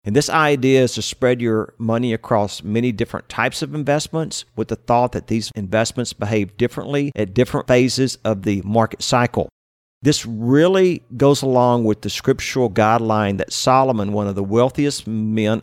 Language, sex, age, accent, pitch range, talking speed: English, male, 50-69, American, 105-125 Hz, 170 wpm